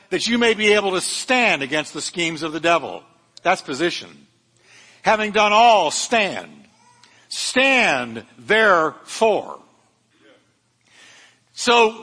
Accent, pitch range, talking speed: American, 170-235 Hz, 110 wpm